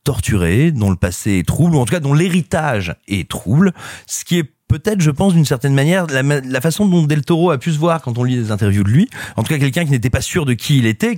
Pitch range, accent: 105-155 Hz, French